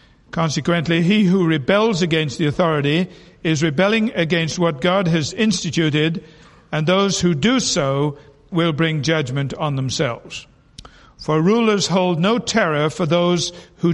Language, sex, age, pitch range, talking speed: English, male, 60-79, 150-180 Hz, 140 wpm